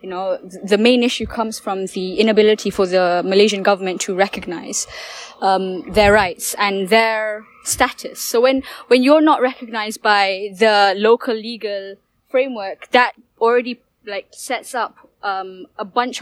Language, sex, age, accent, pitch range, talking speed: English, female, 10-29, Malaysian, 200-245 Hz, 150 wpm